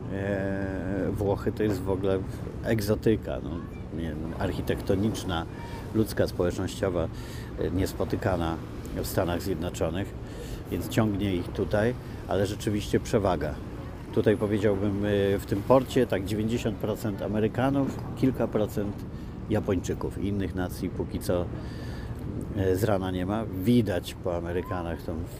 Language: Polish